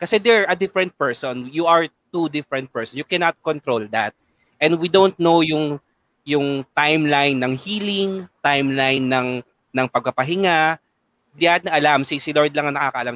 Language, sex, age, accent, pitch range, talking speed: Filipino, male, 20-39, native, 120-155 Hz, 165 wpm